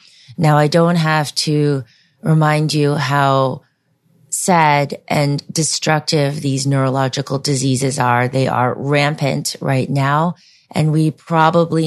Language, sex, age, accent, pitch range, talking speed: English, female, 30-49, American, 140-165 Hz, 115 wpm